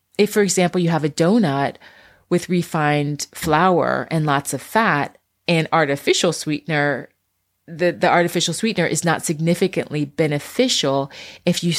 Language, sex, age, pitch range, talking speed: English, female, 30-49, 145-175 Hz, 140 wpm